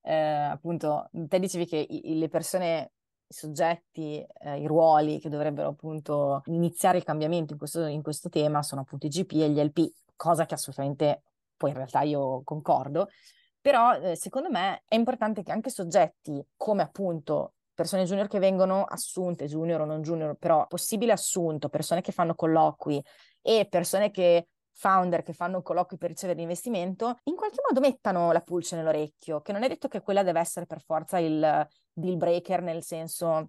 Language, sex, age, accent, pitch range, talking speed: English, female, 20-39, Italian, 160-195 Hz, 170 wpm